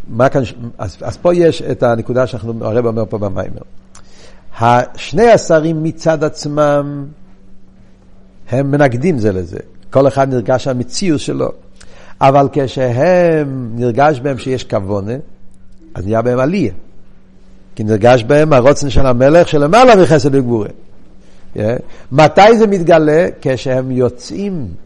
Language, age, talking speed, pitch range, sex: Hebrew, 60-79, 125 wpm, 115-155 Hz, male